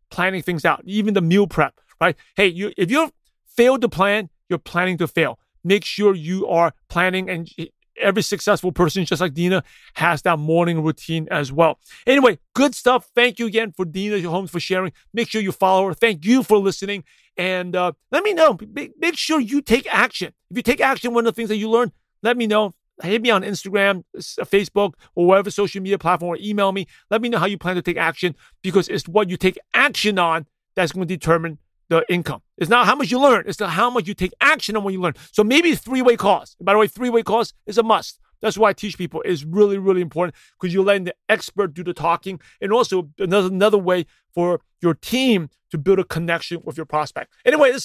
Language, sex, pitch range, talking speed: English, male, 175-225 Hz, 220 wpm